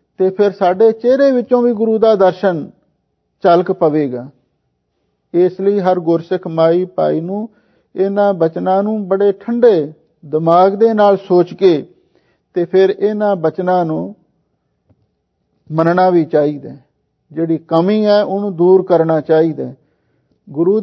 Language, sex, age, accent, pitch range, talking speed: English, male, 50-69, Indian, 165-200 Hz, 135 wpm